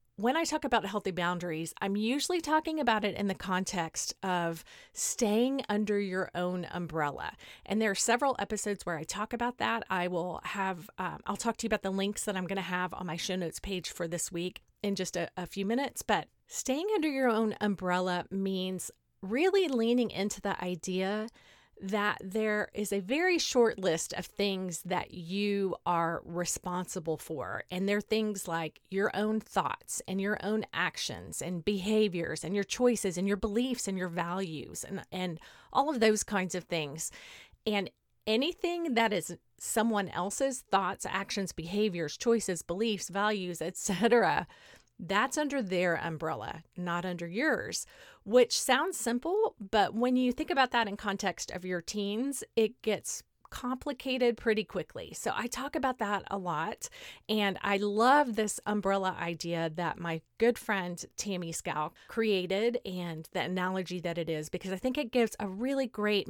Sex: female